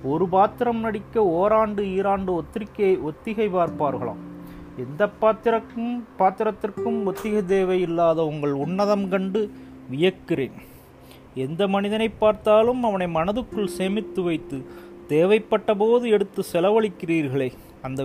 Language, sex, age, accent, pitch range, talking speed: Tamil, male, 30-49, native, 150-210 Hz, 100 wpm